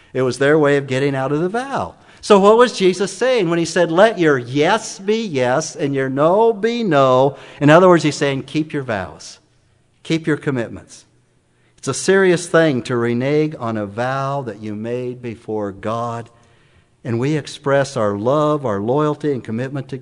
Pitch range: 115-150 Hz